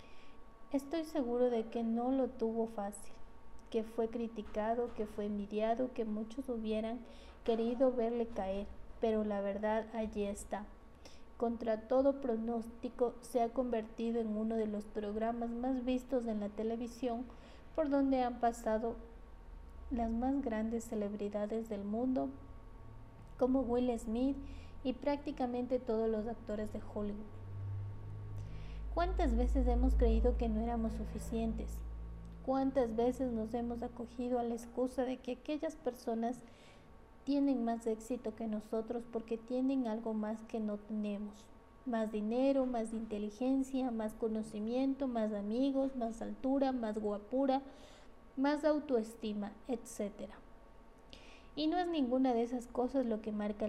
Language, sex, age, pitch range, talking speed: Spanish, female, 30-49, 215-255 Hz, 130 wpm